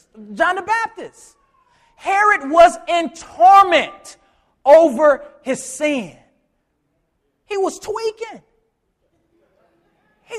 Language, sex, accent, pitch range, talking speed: English, male, American, 310-390 Hz, 80 wpm